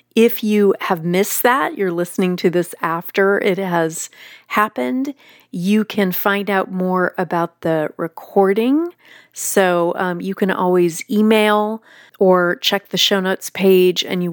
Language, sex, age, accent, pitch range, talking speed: English, female, 30-49, American, 175-220 Hz, 145 wpm